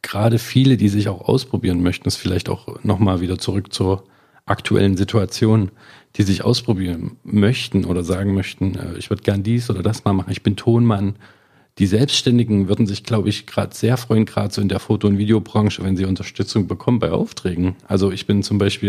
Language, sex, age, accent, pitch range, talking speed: German, male, 40-59, German, 95-115 Hz, 195 wpm